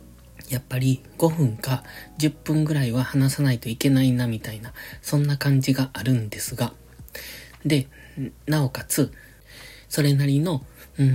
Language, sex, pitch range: Japanese, male, 115-150 Hz